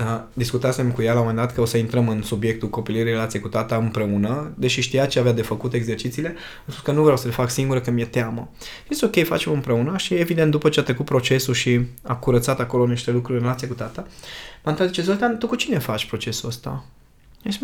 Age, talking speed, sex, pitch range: 20-39, 240 wpm, male, 120-185 Hz